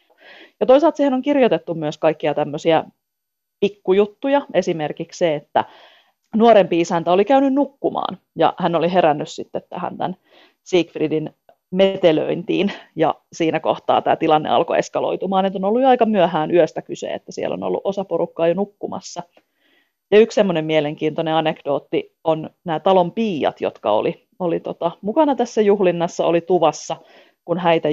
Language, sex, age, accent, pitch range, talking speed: Finnish, female, 30-49, native, 155-195 Hz, 145 wpm